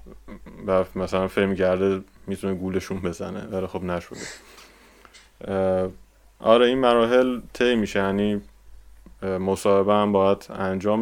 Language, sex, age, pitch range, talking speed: Persian, male, 20-39, 95-105 Hz, 105 wpm